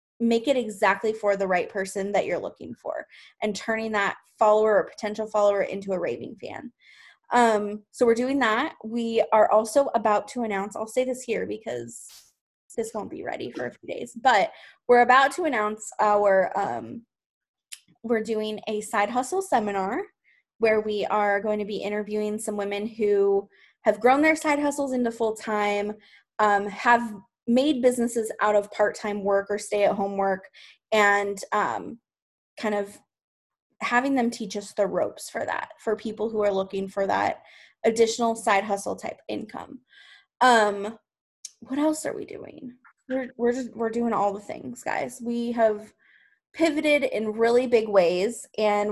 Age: 20-39